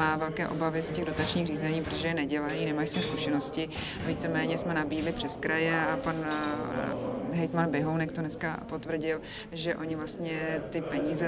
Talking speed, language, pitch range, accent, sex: 155 wpm, Czech, 160-180 Hz, native, female